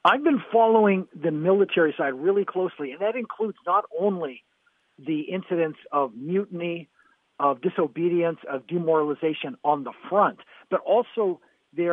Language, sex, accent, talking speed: English, male, American, 135 wpm